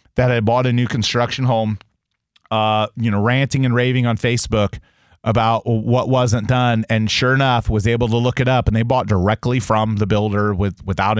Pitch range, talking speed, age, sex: 100-120 Hz, 200 wpm, 30-49, male